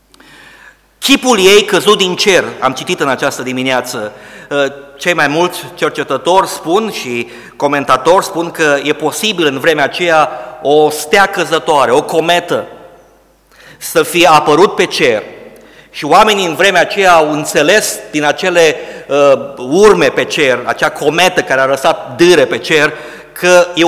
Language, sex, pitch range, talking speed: Romanian, male, 145-180 Hz, 140 wpm